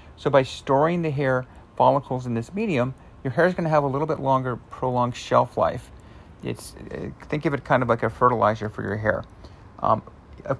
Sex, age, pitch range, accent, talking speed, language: male, 40-59, 100-135 Hz, American, 205 wpm, English